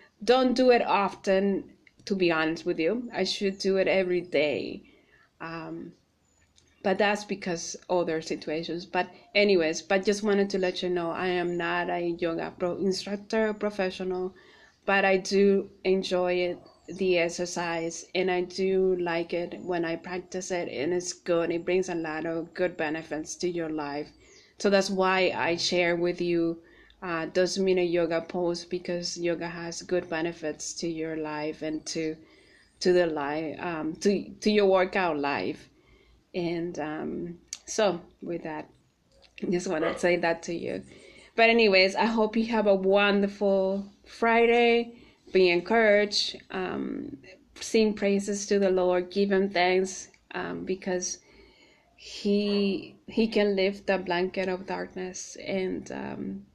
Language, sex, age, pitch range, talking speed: English, female, 20-39, 170-195 Hz, 155 wpm